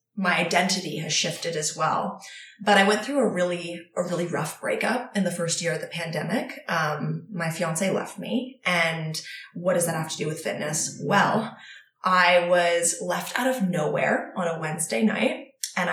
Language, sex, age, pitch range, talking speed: English, female, 20-39, 175-205 Hz, 185 wpm